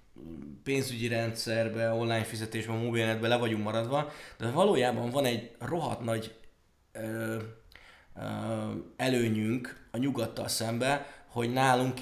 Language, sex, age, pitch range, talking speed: Hungarian, male, 20-39, 110-135 Hz, 100 wpm